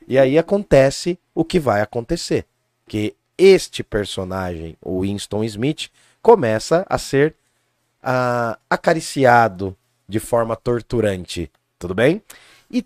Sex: male